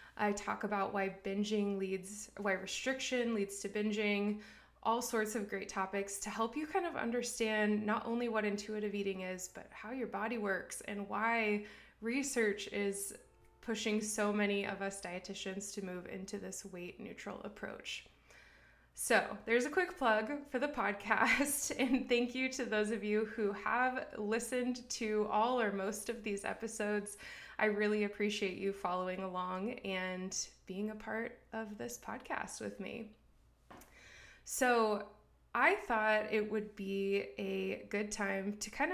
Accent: American